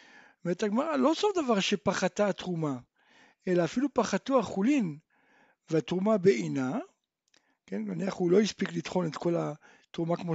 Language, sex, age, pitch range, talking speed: Hebrew, male, 60-79, 170-235 Hz, 130 wpm